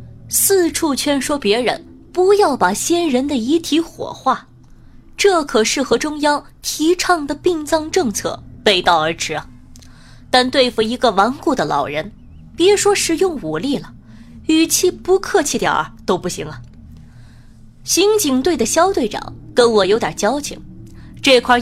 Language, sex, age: Chinese, female, 20-39